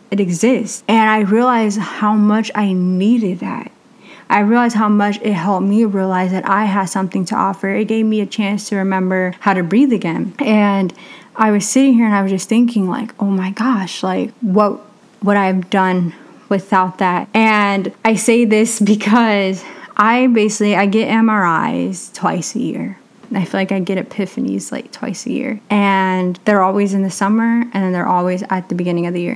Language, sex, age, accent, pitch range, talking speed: English, female, 20-39, American, 195-230 Hz, 195 wpm